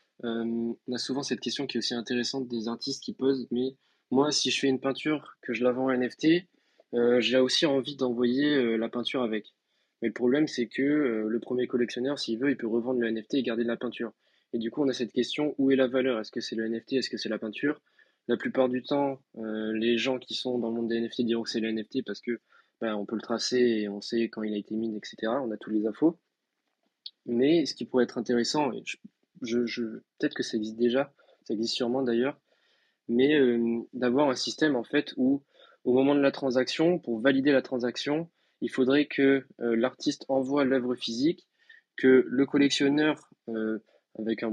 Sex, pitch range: male, 115-135 Hz